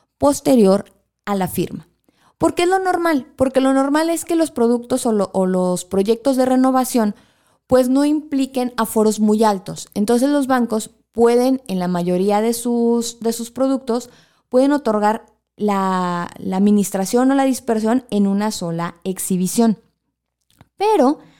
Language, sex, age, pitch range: Spanish, female, 20-39, 210-265 Hz